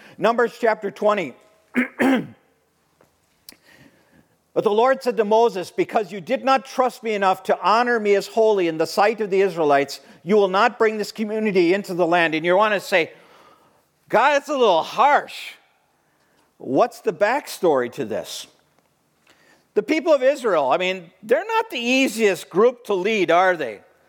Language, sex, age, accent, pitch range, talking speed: English, male, 50-69, American, 200-255 Hz, 165 wpm